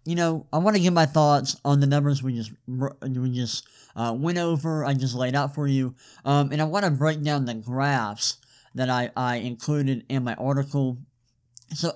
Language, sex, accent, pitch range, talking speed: English, male, American, 130-160 Hz, 205 wpm